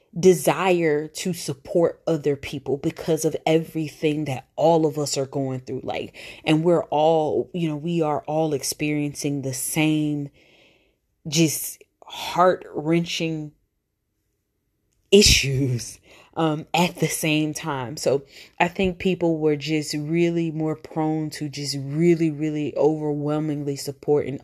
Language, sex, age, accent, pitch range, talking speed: English, female, 30-49, American, 140-170 Hz, 125 wpm